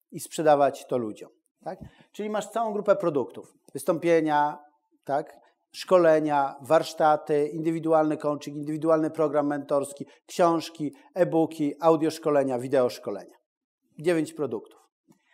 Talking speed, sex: 100 wpm, male